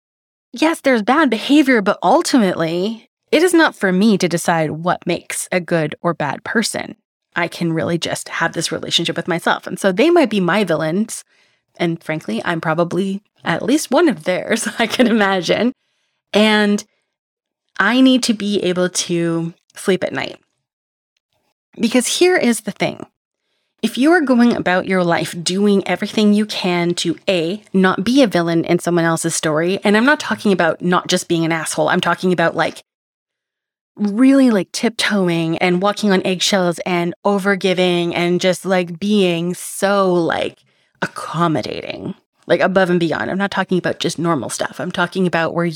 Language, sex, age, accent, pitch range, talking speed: English, female, 20-39, American, 170-220 Hz, 170 wpm